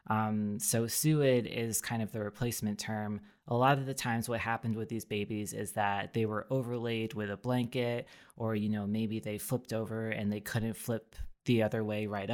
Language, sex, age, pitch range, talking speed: English, female, 20-39, 105-120 Hz, 205 wpm